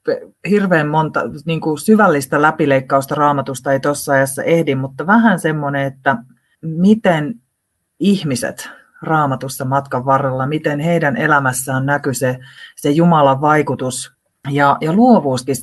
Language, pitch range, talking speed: Finnish, 135-160 Hz, 115 wpm